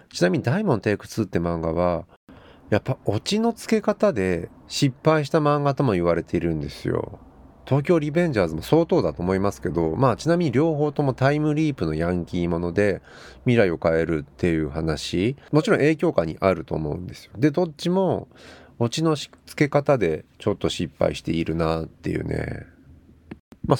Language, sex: Japanese, male